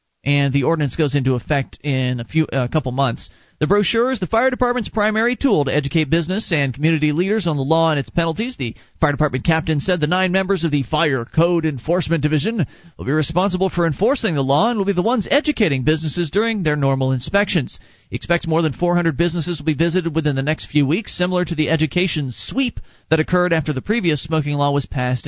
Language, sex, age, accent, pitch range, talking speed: English, male, 40-59, American, 140-190 Hz, 220 wpm